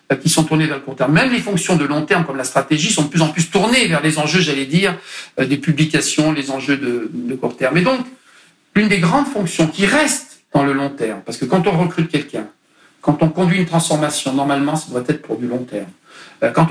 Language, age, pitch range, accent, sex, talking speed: French, 50-69, 145-185 Hz, French, male, 240 wpm